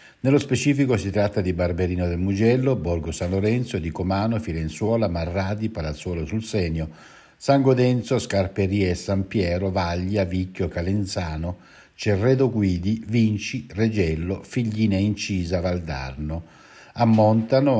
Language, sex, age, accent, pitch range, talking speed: Italian, male, 60-79, native, 85-110 Hz, 115 wpm